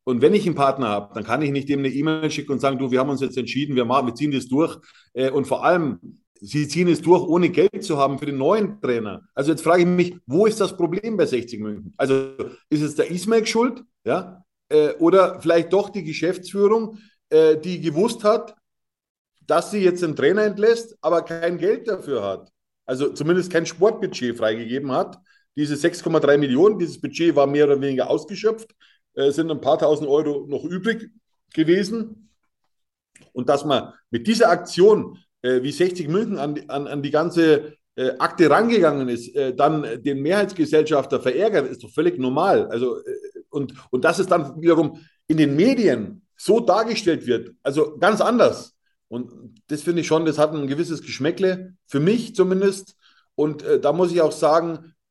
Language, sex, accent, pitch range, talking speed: German, male, German, 145-200 Hz, 180 wpm